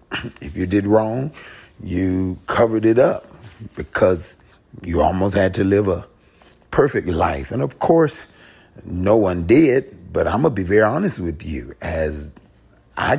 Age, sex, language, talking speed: 30-49, male, English, 155 wpm